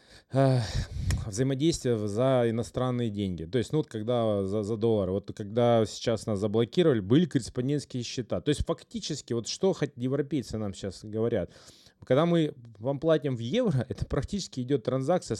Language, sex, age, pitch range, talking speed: Russian, male, 20-39, 110-135 Hz, 155 wpm